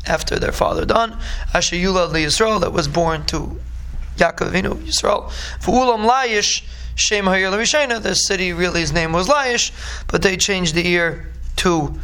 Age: 20-39